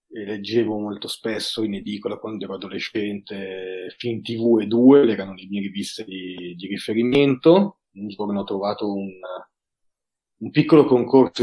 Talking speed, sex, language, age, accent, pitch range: 140 wpm, male, Italian, 30-49, native, 100-125 Hz